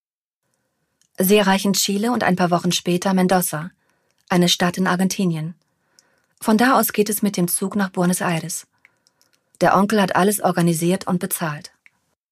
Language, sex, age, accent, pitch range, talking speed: German, female, 30-49, German, 180-210 Hz, 150 wpm